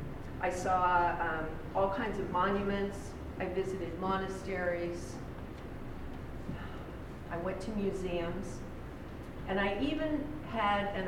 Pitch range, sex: 170-200 Hz, female